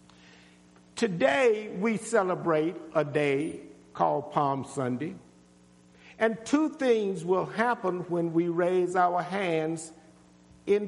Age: 50-69